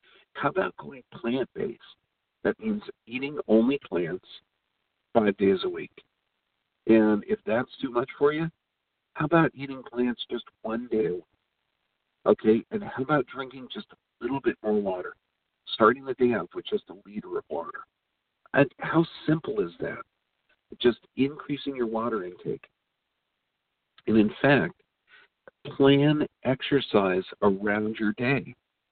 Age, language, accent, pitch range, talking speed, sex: 50-69, English, American, 105-145 Hz, 135 wpm, male